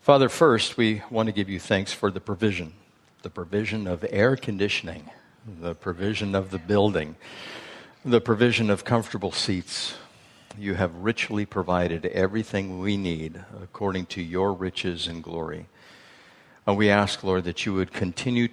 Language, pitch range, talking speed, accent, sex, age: English, 90-110 Hz, 150 wpm, American, male, 60-79